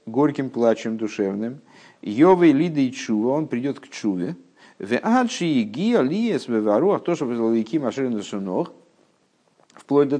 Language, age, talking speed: Russian, 50-69, 130 wpm